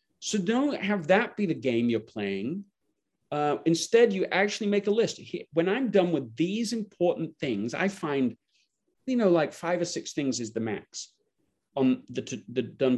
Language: English